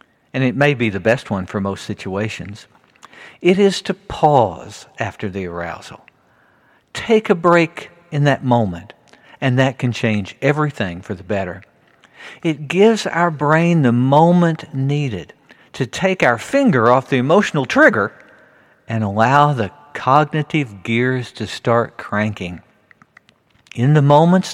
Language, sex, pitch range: English, male, 110-165 Hz